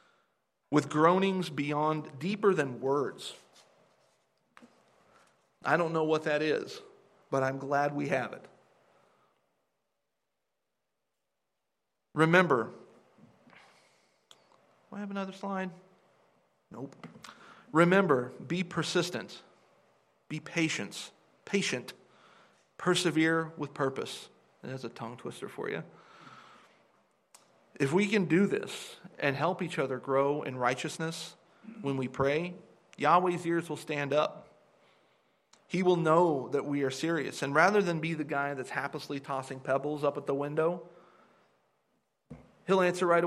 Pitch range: 140-180 Hz